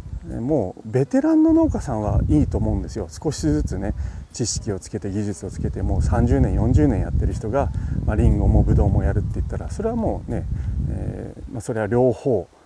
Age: 40-59